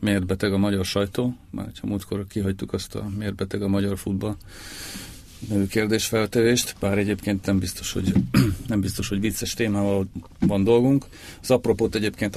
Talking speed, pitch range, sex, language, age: 155 wpm, 95-105 Hz, male, Hungarian, 40-59